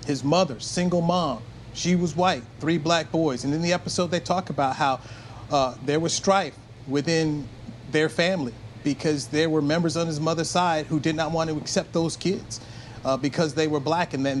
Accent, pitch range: American, 130-170 Hz